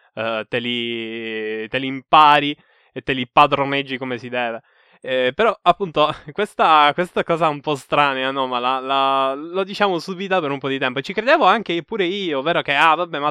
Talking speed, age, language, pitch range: 200 wpm, 20-39, Italian, 125-170 Hz